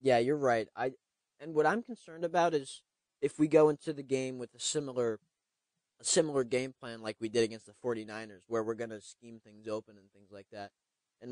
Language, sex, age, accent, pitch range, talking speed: English, male, 20-39, American, 110-130 Hz, 210 wpm